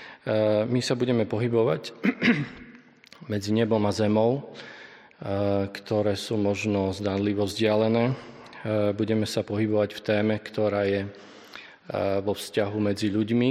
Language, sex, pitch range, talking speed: Slovak, male, 100-110 Hz, 105 wpm